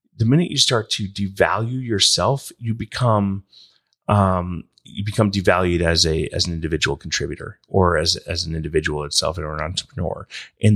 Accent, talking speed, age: American, 165 wpm, 30-49